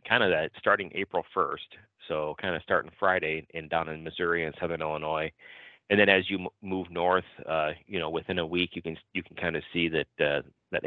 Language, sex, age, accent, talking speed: English, male, 30-49, American, 220 wpm